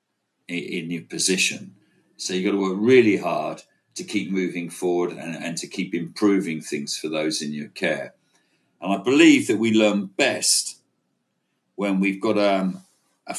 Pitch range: 90-110 Hz